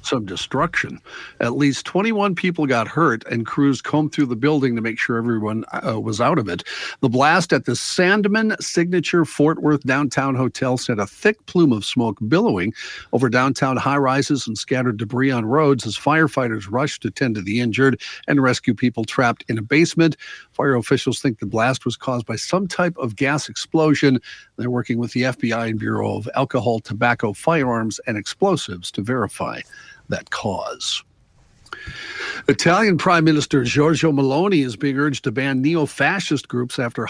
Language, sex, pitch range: English, male, 120-150 Hz